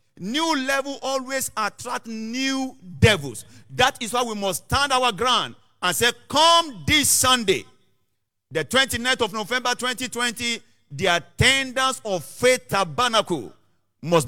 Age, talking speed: 50-69, 125 wpm